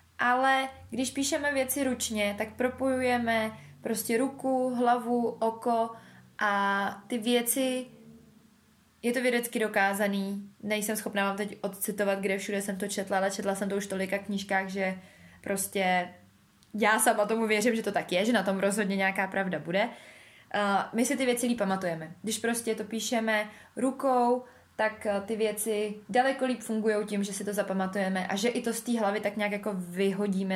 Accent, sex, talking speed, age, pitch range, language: native, female, 165 wpm, 20-39, 195-245 Hz, Czech